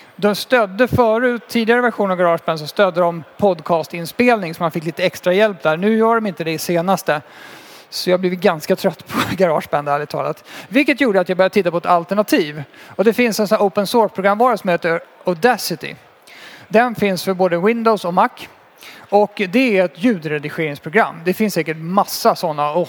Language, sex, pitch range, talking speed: Swedish, male, 175-225 Hz, 185 wpm